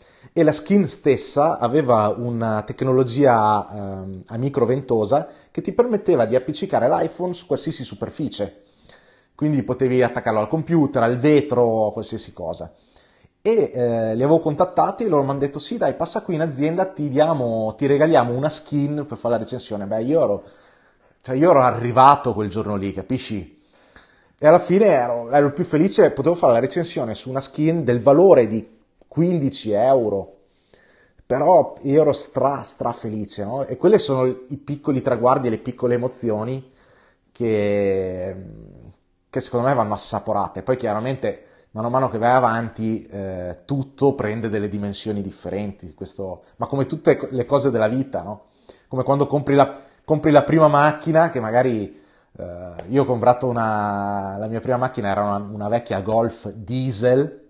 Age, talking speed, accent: 30-49, 165 wpm, native